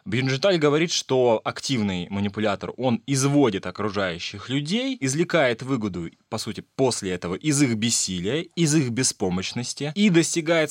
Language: Russian